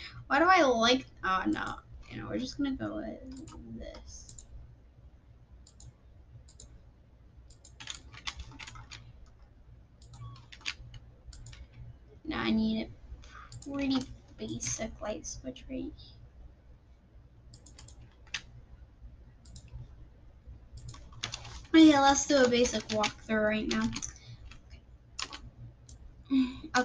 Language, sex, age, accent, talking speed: English, female, 10-29, American, 70 wpm